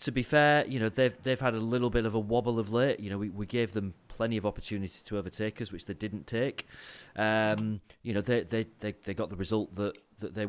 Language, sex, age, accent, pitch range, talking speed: English, male, 30-49, British, 100-115 Hz, 255 wpm